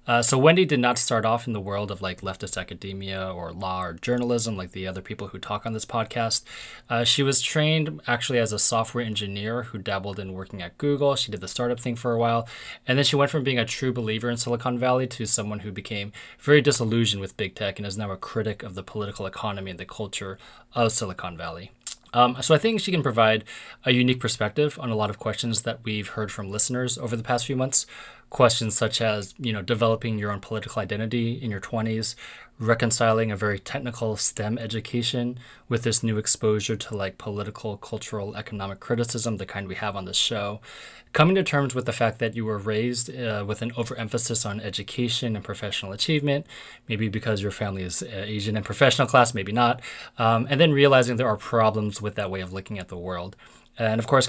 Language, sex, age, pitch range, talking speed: English, male, 20-39, 105-120 Hz, 215 wpm